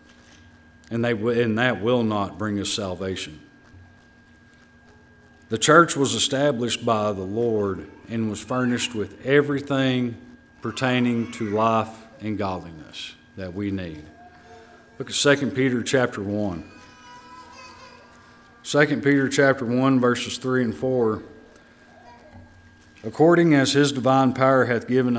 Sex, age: male, 40-59